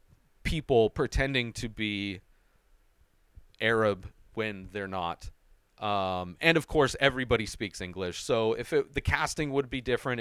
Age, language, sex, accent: 30-49, English, male, American